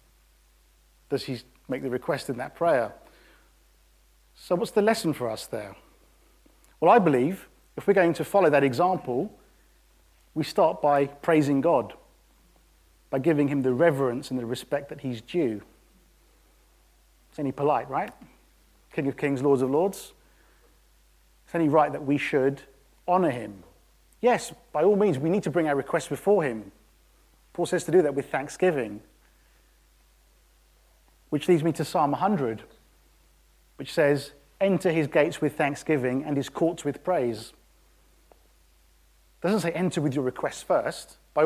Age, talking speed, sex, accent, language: 40-59, 150 wpm, male, British, English